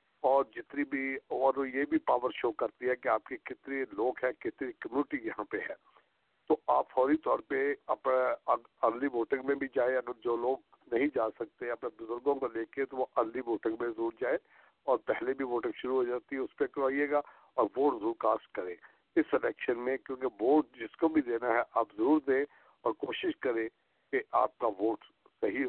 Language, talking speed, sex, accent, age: English, 175 wpm, male, Indian, 60-79